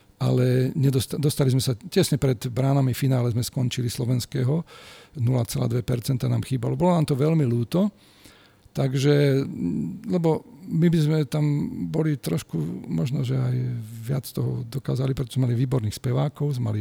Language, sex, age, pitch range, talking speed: Slovak, male, 40-59, 120-145 Hz, 150 wpm